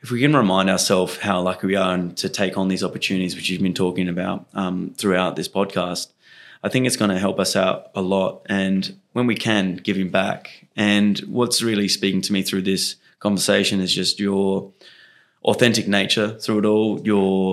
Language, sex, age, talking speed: English, male, 20-39, 200 wpm